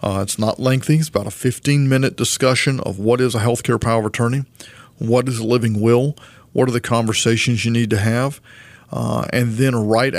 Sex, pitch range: male, 115-135 Hz